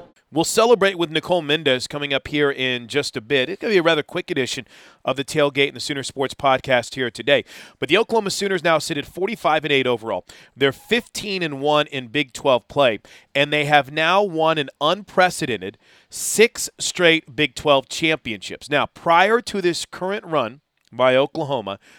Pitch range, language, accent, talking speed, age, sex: 135-180 Hz, English, American, 185 wpm, 40-59, male